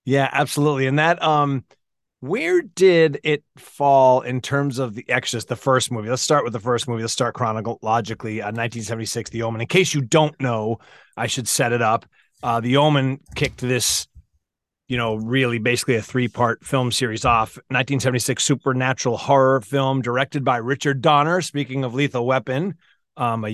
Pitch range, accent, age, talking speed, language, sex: 120-145 Hz, American, 30-49, 180 wpm, English, male